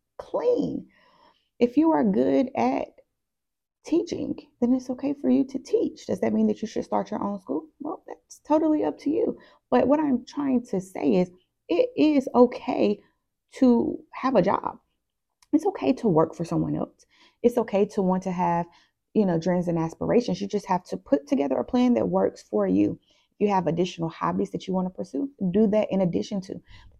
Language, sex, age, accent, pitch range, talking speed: English, female, 30-49, American, 180-260 Hz, 200 wpm